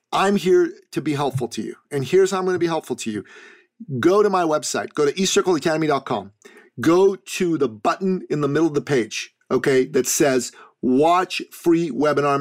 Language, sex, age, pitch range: English, male, 40-59, 155-225 Hz